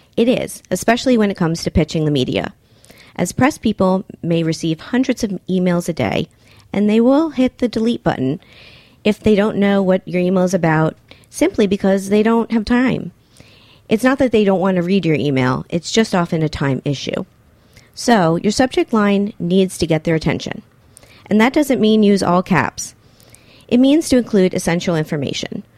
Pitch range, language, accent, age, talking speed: 165-225 Hz, English, American, 40-59, 185 wpm